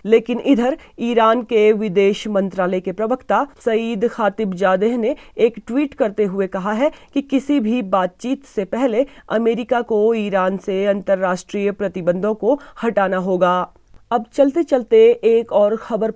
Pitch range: 200-245 Hz